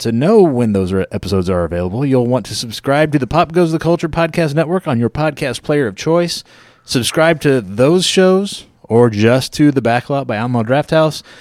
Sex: male